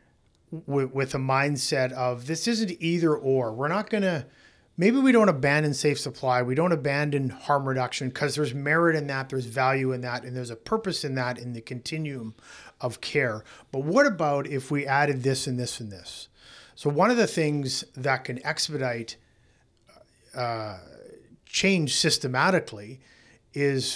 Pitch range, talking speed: 125-150 Hz, 165 wpm